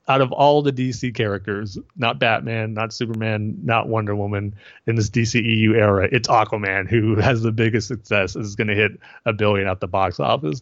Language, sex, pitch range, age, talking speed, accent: English, male, 100-115 Hz, 30-49, 190 wpm, American